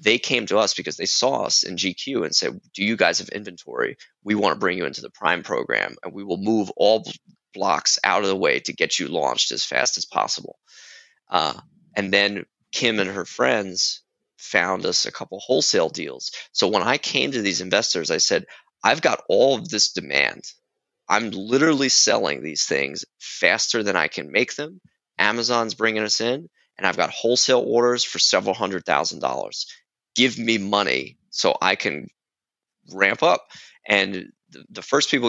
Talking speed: 185 wpm